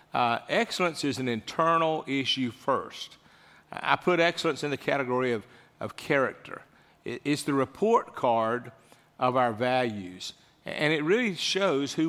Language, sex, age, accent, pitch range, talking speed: English, male, 50-69, American, 125-155 Hz, 140 wpm